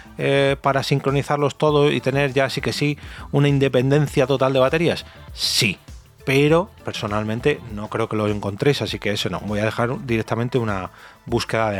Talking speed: 175 wpm